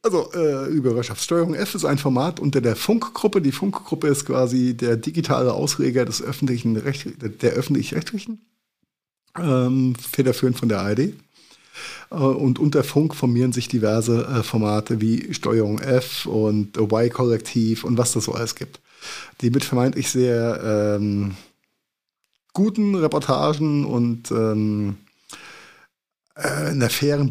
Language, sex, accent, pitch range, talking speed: German, male, German, 115-145 Hz, 125 wpm